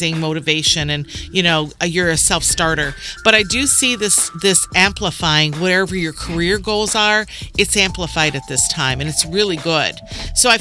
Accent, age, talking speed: American, 50-69, 170 wpm